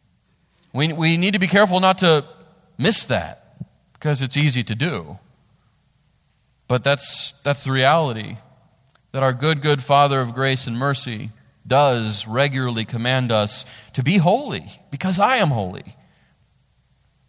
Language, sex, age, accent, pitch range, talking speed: English, male, 40-59, American, 120-150 Hz, 140 wpm